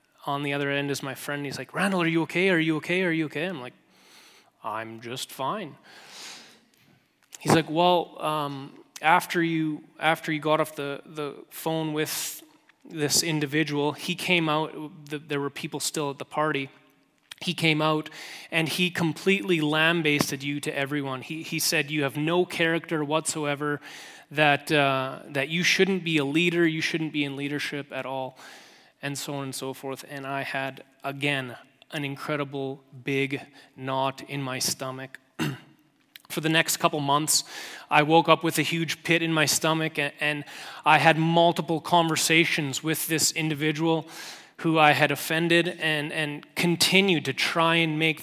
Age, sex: 20-39, male